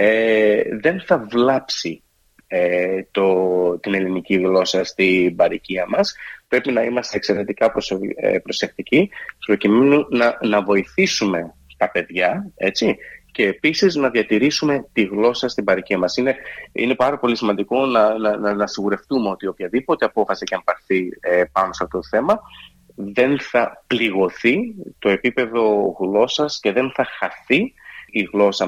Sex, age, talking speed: male, 30-49, 140 wpm